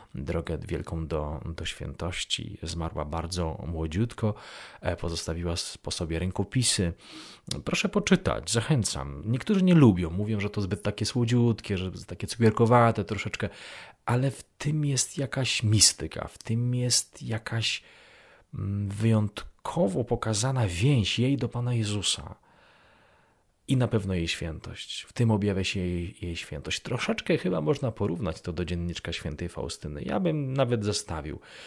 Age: 30-49